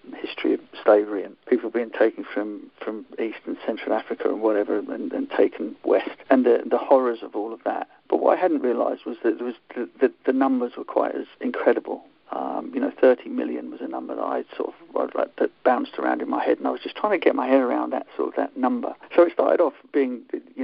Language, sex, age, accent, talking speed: English, male, 50-69, British, 245 wpm